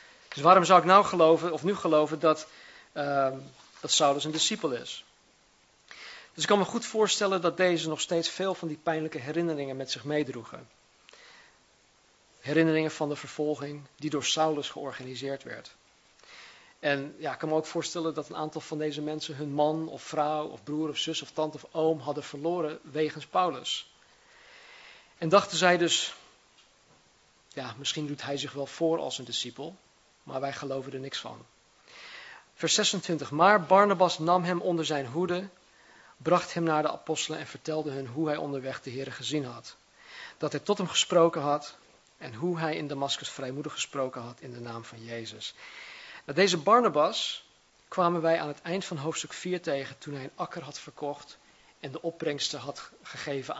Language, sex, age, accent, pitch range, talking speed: Dutch, male, 50-69, Dutch, 140-170 Hz, 175 wpm